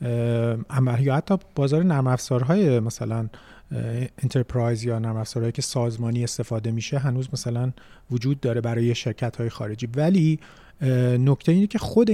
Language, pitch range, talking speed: Persian, 120-145 Hz, 135 wpm